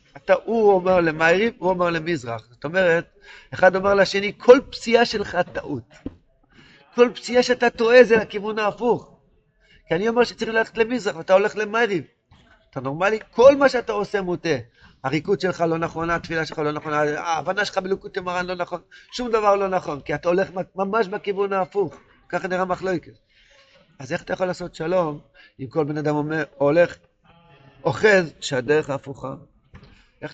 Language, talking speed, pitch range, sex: Hebrew, 160 wpm, 145-195 Hz, male